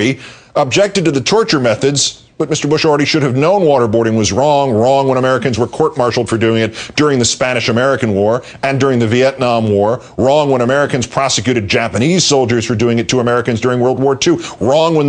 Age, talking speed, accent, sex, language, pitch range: 50-69, 195 wpm, American, male, English, 105-135 Hz